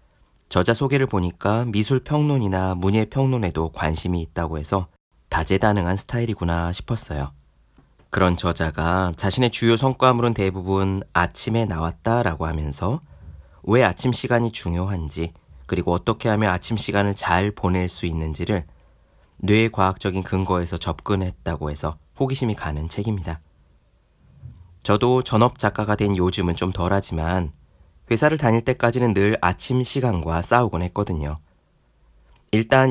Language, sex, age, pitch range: Korean, male, 30-49, 80-115 Hz